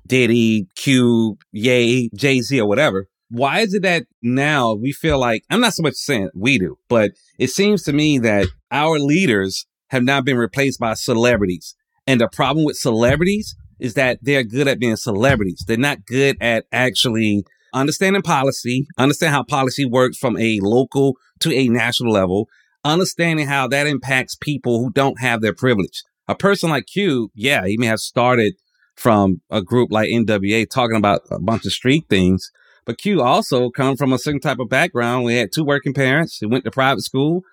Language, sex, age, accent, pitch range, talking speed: English, male, 30-49, American, 115-150 Hz, 185 wpm